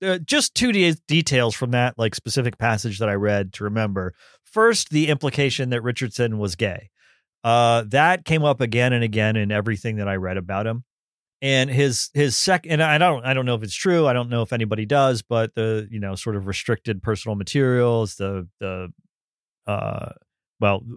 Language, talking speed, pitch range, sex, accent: English, 195 wpm, 110-150 Hz, male, American